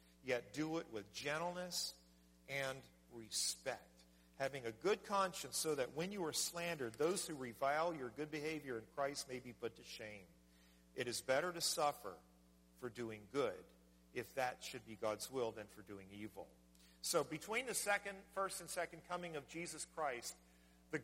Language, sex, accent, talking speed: English, male, American, 170 wpm